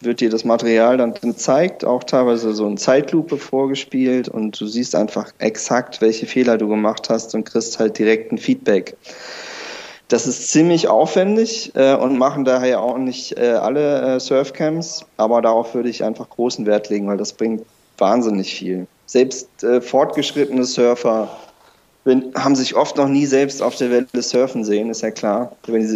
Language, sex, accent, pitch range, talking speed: German, male, German, 110-125 Hz, 160 wpm